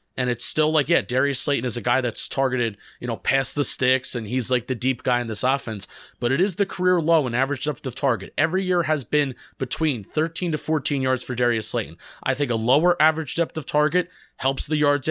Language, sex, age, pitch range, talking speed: English, male, 30-49, 125-160 Hz, 240 wpm